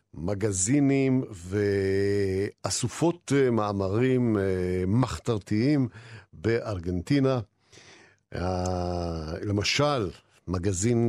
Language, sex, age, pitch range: Hebrew, male, 50-69, 95-130 Hz